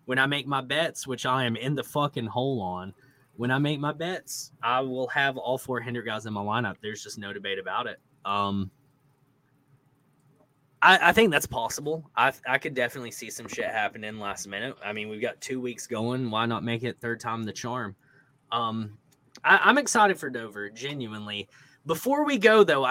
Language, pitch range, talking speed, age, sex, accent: English, 115-145 Hz, 200 wpm, 20-39, male, American